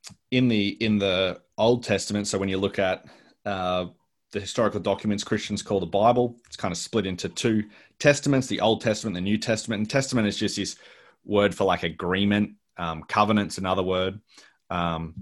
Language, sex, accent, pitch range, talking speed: English, male, Australian, 95-115 Hz, 185 wpm